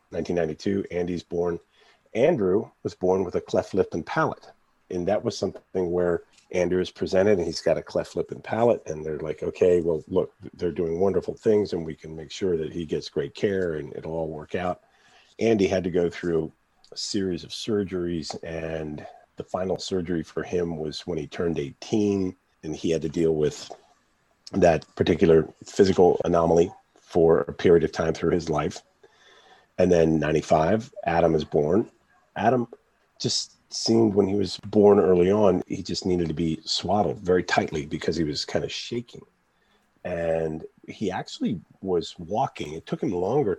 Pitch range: 80-90 Hz